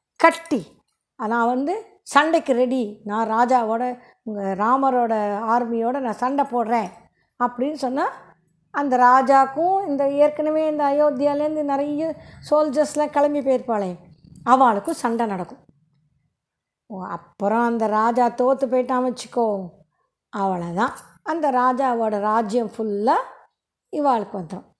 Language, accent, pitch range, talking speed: Tamil, native, 215-290 Hz, 105 wpm